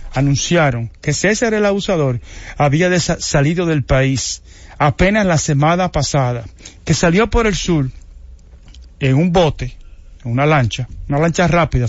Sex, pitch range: male, 100-170 Hz